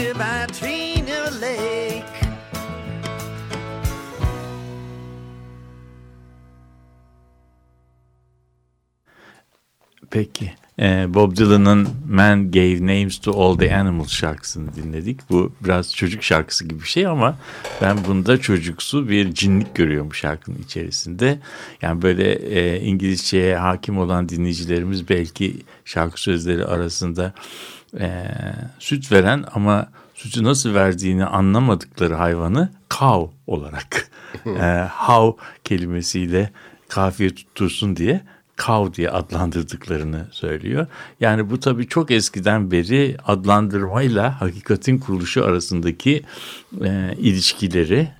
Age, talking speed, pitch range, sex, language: 60-79, 90 wpm, 85-110 Hz, male, Turkish